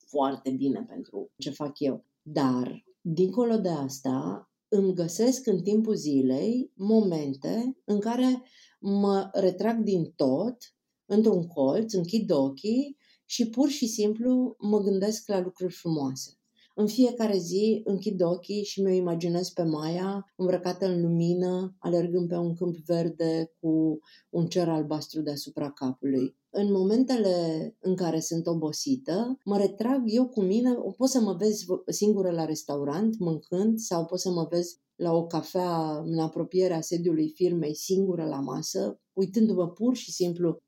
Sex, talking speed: female, 145 wpm